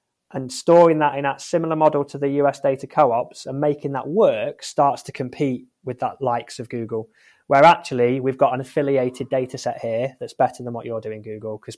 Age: 20-39